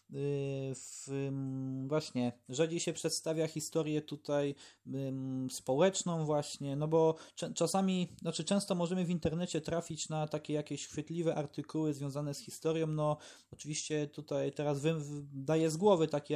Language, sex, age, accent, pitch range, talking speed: Polish, male, 20-39, native, 145-165 Hz, 140 wpm